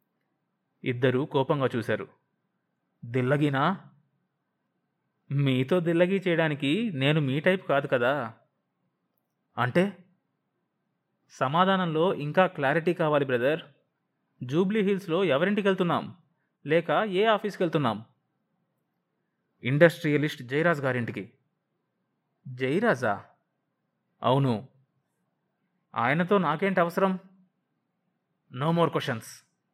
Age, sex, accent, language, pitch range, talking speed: 20-39, male, native, Telugu, 135-185 Hz, 75 wpm